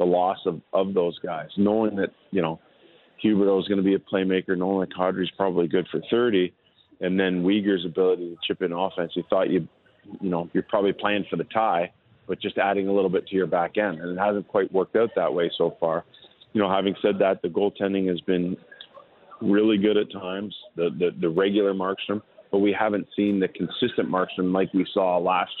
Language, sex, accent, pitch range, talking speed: English, male, American, 90-105 Hz, 220 wpm